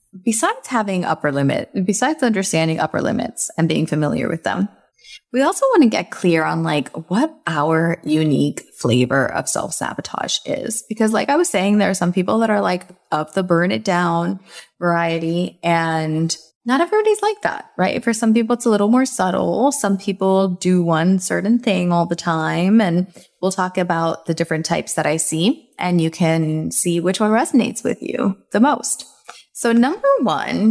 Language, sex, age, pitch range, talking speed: English, female, 20-39, 160-210 Hz, 180 wpm